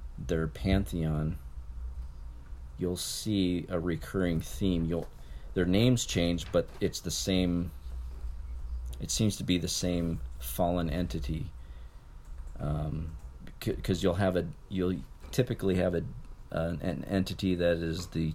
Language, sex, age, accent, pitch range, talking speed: English, male, 40-59, American, 65-85 Hz, 130 wpm